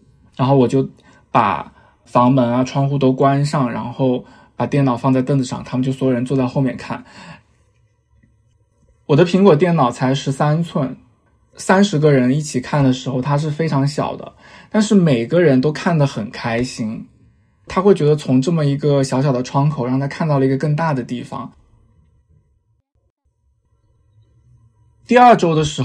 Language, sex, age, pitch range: Chinese, male, 20-39, 125-150 Hz